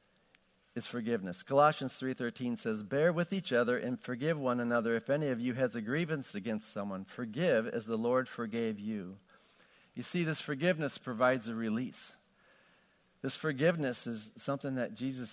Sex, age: male, 50-69